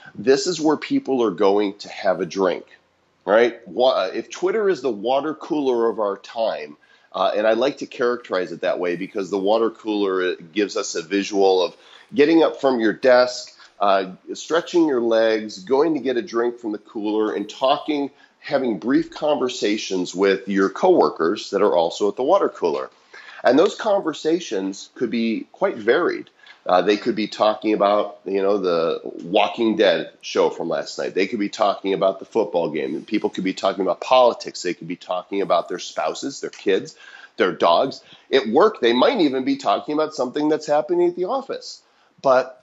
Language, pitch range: English, 105-150 Hz